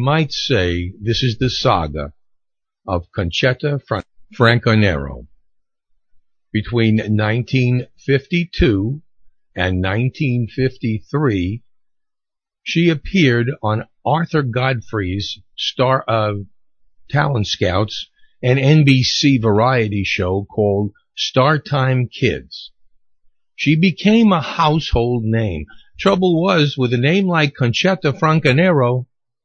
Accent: American